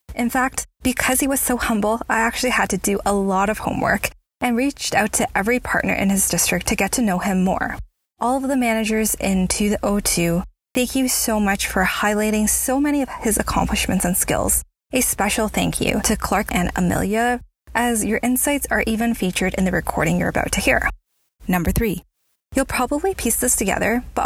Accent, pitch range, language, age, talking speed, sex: American, 195-255 Hz, English, 20-39, 195 wpm, female